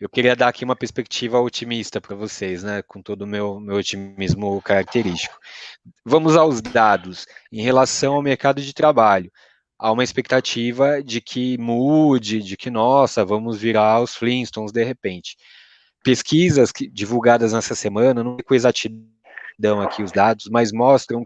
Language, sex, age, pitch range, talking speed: Portuguese, male, 20-39, 110-145 Hz, 150 wpm